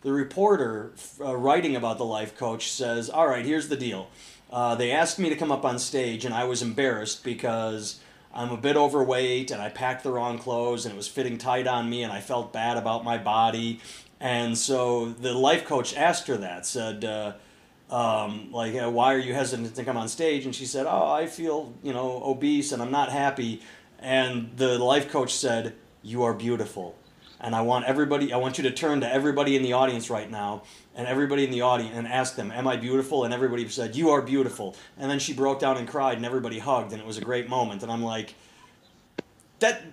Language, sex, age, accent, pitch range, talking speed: English, male, 30-49, American, 115-140 Hz, 220 wpm